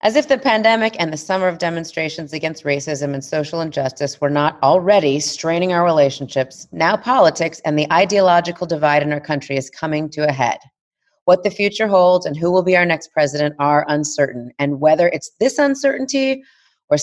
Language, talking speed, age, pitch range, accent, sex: English, 185 wpm, 30-49, 145-190 Hz, American, female